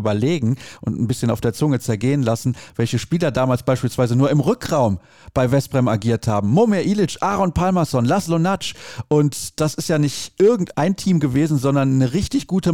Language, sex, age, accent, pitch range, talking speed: German, male, 40-59, German, 115-150 Hz, 180 wpm